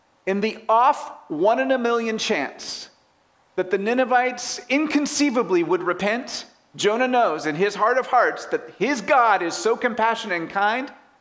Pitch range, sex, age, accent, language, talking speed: 155-240 Hz, male, 40-59, American, English, 155 wpm